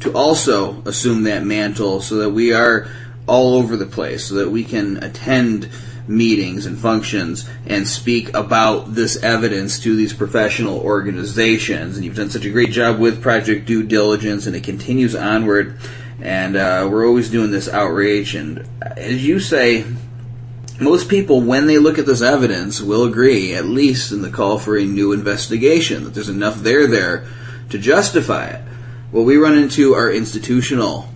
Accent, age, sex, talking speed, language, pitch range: American, 30-49, male, 170 wpm, English, 105-120 Hz